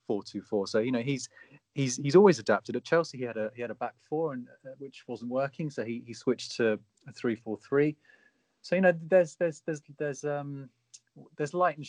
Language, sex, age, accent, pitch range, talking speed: English, male, 30-49, British, 105-125 Hz, 205 wpm